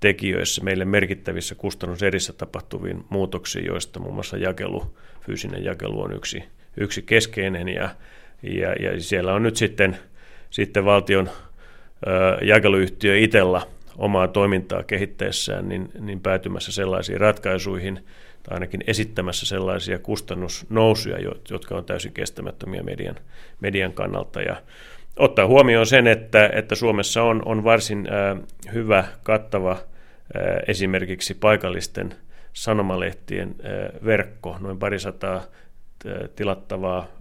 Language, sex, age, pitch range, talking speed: Finnish, male, 30-49, 95-105 Hz, 105 wpm